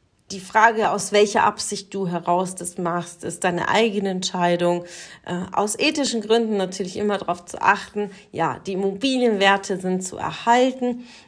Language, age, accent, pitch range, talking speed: German, 40-59, German, 180-210 Hz, 145 wpm